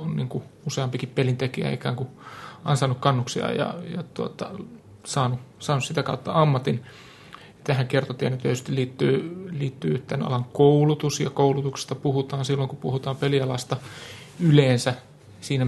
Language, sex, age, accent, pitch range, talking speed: Finnish, male, 30-49, native, 130-150 Hz, 125 wpm